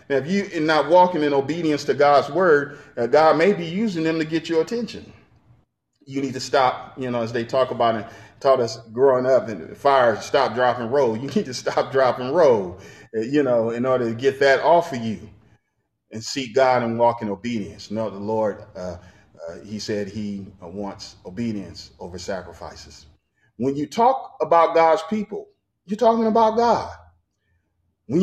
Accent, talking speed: American, 190 wpm